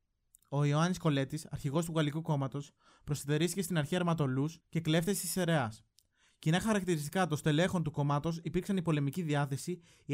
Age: 20-39